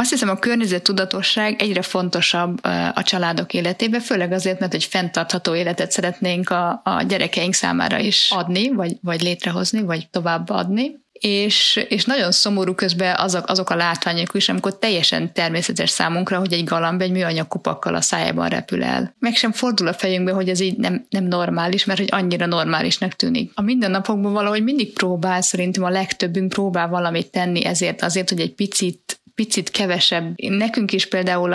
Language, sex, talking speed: Hungarian, female, 170 wpm